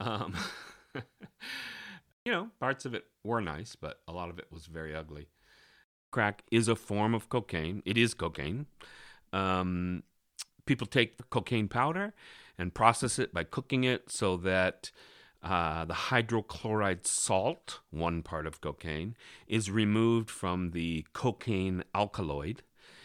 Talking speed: 140 wpm